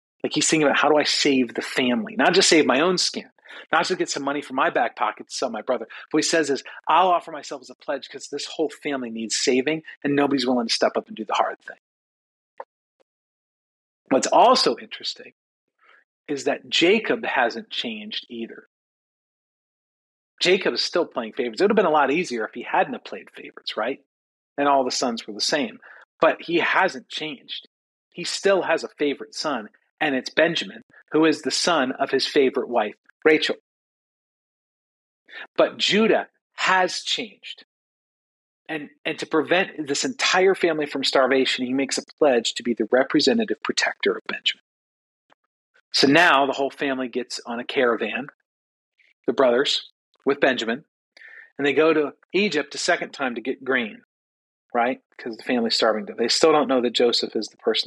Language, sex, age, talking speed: English, male, 40-59, 180 wpm